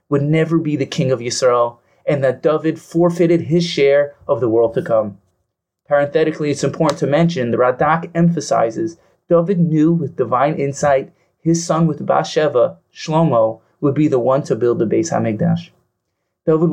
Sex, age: male, 30-49